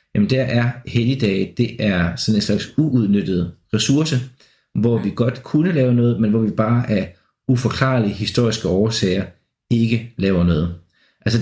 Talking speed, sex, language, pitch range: 150 wpm, male, Danish, 105-125 Hz